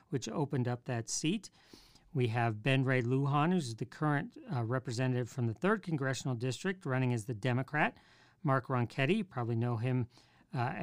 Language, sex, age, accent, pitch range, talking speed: English, male, 50-69, American, 125-160 Hz, 170 wpm